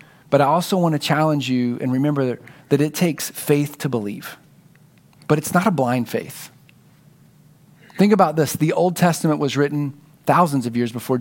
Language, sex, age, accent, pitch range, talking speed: English, male, 40-59, American, 140-165 Hz, 175 wpm